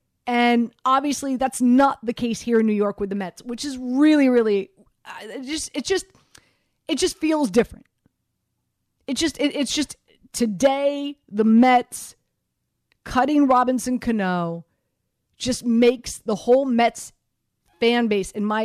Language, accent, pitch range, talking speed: English, American, 190-250 Hz, 140 wpm